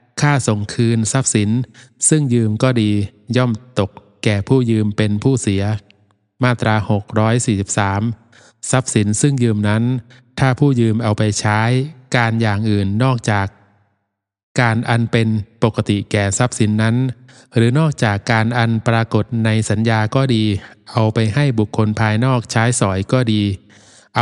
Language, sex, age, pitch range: Thai, male, 20-39, 105-125 Hz